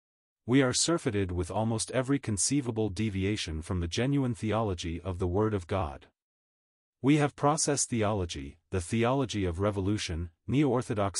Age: 40-59